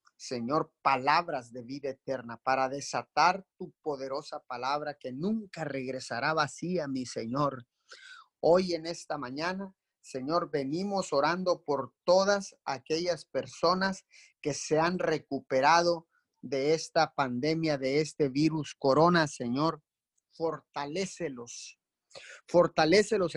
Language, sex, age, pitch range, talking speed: Spanish, male, 40-59, 140-170 Hz, 105 wpm